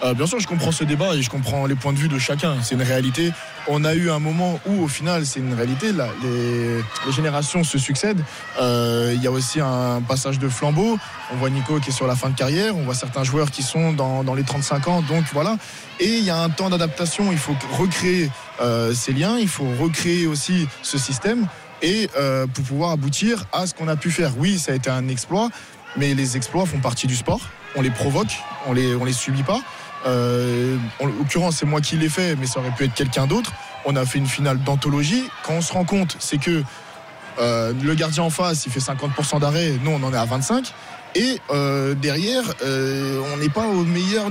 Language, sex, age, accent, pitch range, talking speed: French, male, 20-39, French, 135-175 Hz, 235 wpm